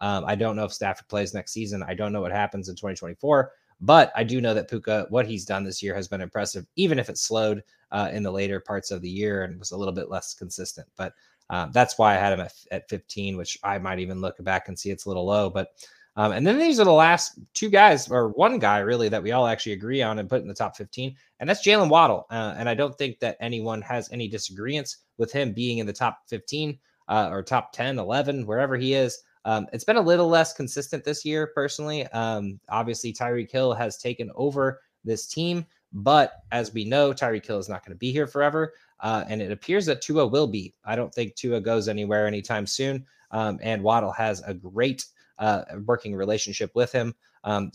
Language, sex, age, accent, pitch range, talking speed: English, male, 20-39, American, 100-125 Hz, 230 wpm